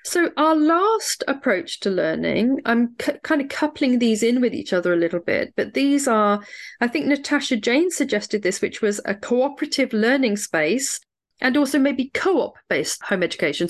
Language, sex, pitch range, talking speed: English, female, 195-260 Hz, 175 wpm